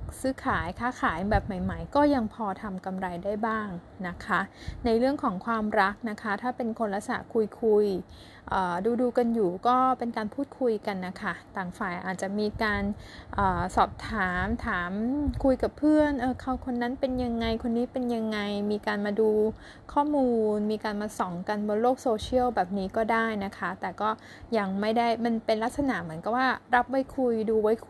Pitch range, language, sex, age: 200-250 Hz, Thai, female, 20-39